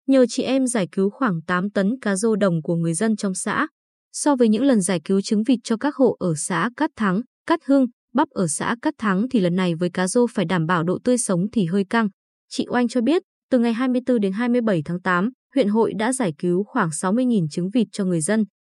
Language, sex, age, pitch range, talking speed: Vietnamese, female, 20-39, 195-255 Hz, 245 wpm